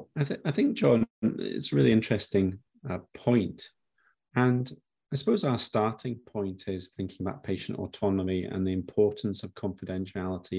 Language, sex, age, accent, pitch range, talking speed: English, male, 30-49, British, 95-105 Hz, 155 wpm